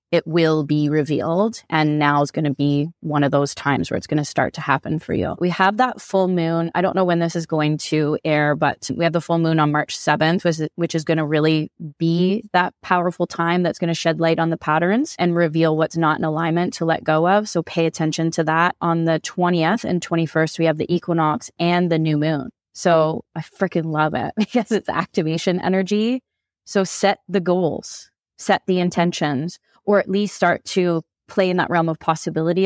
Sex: female